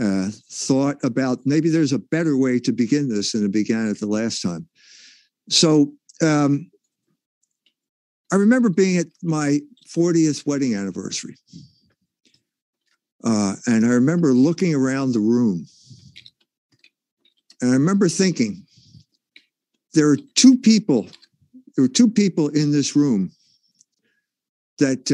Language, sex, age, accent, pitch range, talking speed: English, male, 60-79, American, 120-175 Hz, 125 wpm